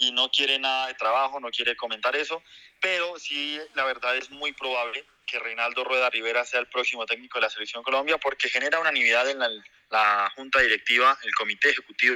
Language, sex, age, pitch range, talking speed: Spanish, male, 20-39, 120-150 Hz, 195 wpm